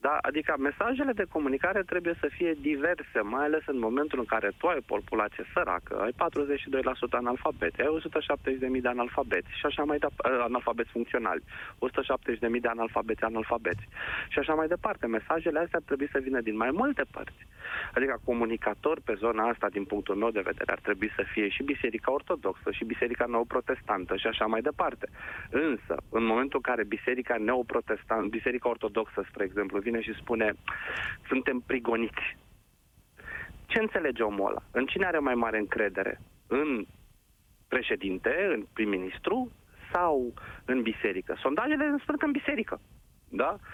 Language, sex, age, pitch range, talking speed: Romanian, male, 20-39, 110-155 Hz, 150 wpm